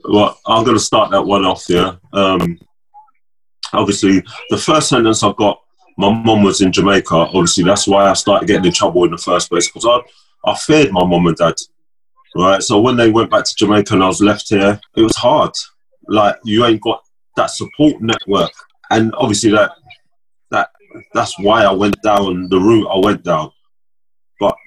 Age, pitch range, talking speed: 30-49, 90-115 Hz, 190 wpm